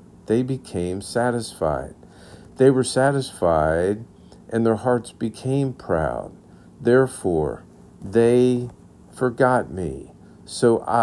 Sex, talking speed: male, 85 wpm